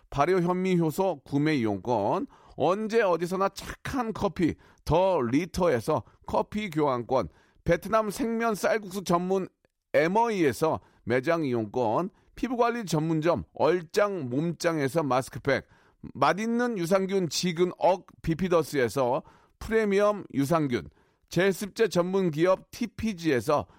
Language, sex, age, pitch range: Korean, male, 40-59, 155-205 Hz